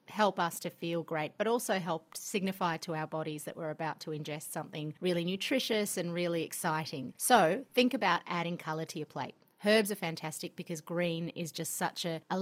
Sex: female